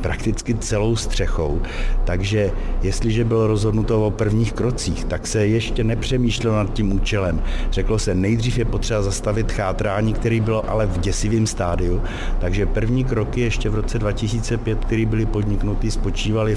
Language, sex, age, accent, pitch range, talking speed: Czech, male, 60-79, native, 90-110 Hz, 150 wpm